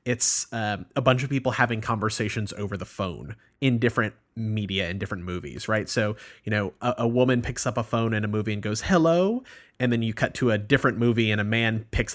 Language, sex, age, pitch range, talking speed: English, male, 30-49, 105-125 Hz, 225 wpm